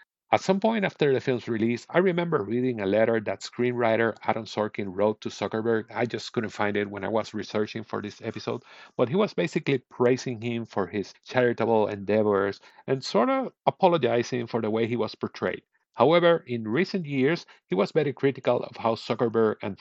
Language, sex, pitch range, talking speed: English, male, 105-135 Hz, 190 wpm